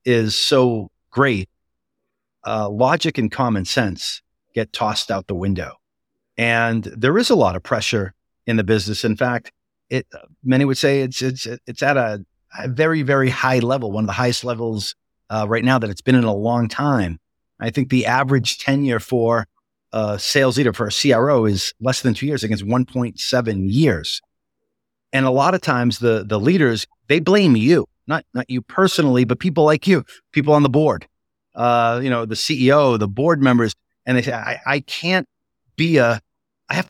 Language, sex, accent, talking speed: English, male, American, 190 wpm